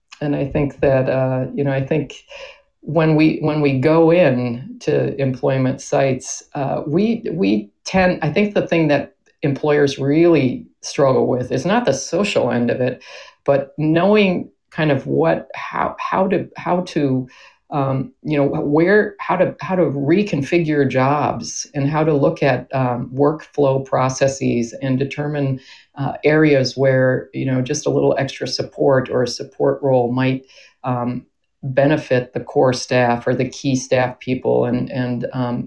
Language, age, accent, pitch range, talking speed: English, 50-69, American, 125-150 Hz, 160 wpm